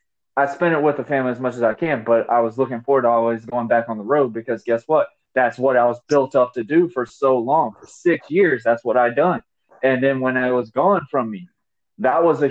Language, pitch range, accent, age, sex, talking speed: English, 125-165 Hz, American, 20-39, male, 265 wpm